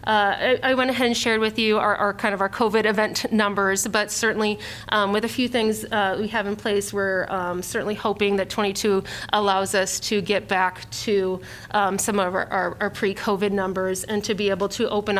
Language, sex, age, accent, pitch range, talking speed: English, female, 30-49, American, 195-215 Hz, 215 wpm